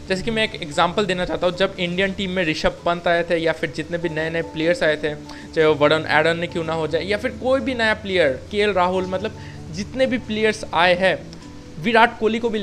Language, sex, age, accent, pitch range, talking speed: Hindi, male, 20-39, native, 170-210 Hz, 245 wpm